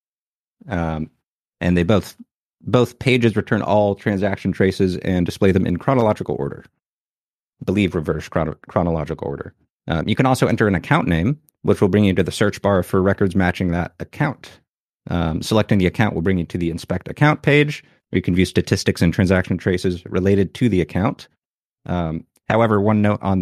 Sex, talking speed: male, 185 wpm